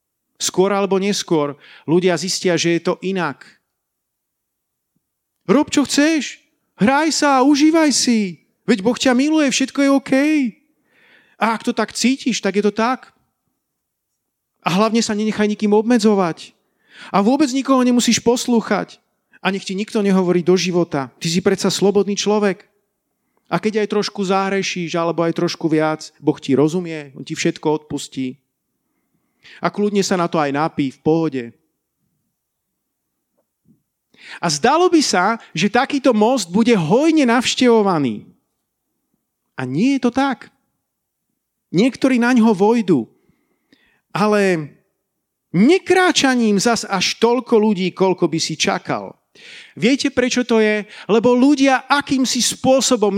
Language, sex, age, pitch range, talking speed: Slovak, male, 40-59, 180-250 Hz, 135 wpm